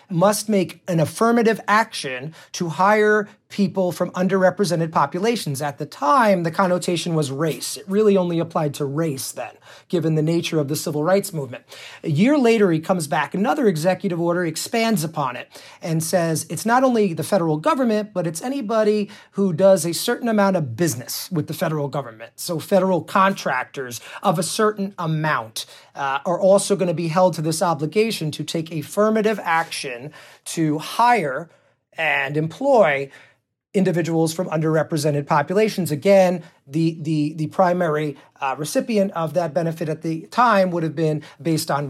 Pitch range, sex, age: 155-205 Hz, male, 30-49